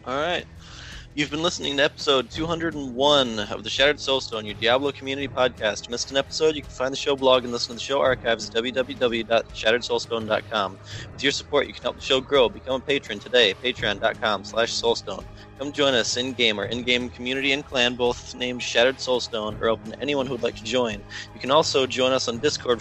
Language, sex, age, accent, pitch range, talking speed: English, male, 20-39, American, 110-130 Hz, 205 wpm